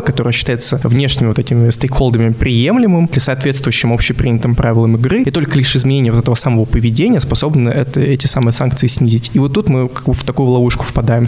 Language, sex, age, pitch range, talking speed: Russian, male, 20-39, 115-135 Hz, 190 wpm